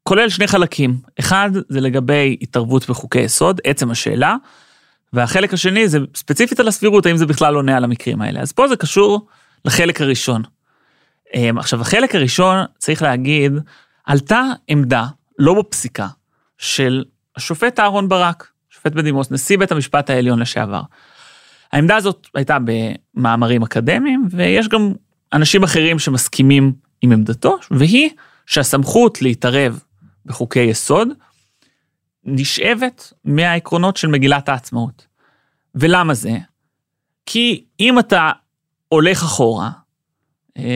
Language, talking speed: Hebrew, 115 wpm